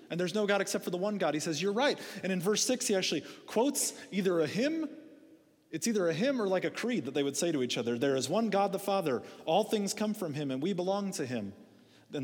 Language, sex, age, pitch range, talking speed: English, male, 30-49, 165-220 Hz, 270 wpm